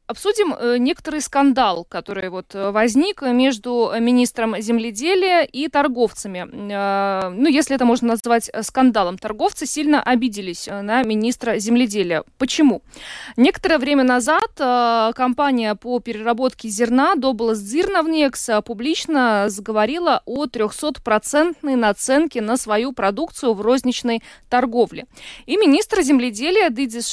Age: 20-39